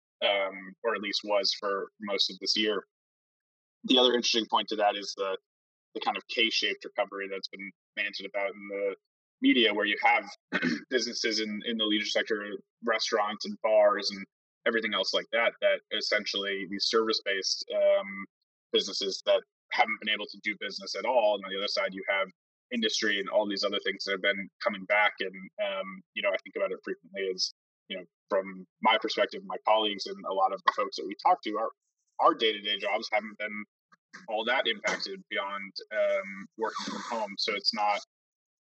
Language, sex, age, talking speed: English, male, 20-39, 195 wpm